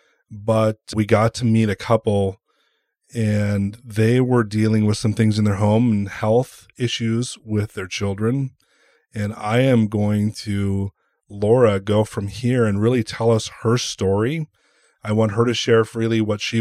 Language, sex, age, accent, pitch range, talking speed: English, male, 30-49, American, 100-115 Hz, 165 wpm